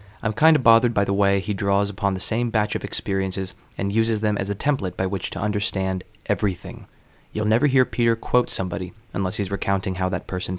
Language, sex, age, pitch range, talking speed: English, male, 20-39, 95-110 Hz, 215 wpm